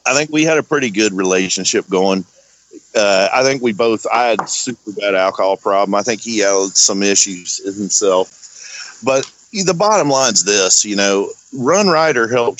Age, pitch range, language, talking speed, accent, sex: 40-59, 105-150 Hz, English, 180 wpm, American, male